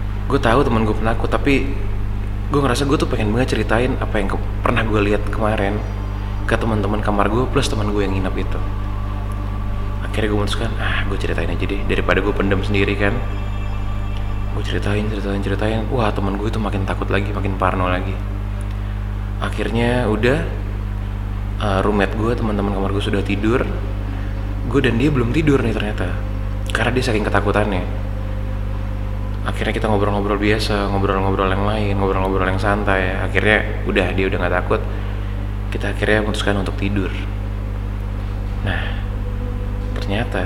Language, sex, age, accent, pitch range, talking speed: Indonesian, male, 20-39, native, 100-105 Hz, 150 wpm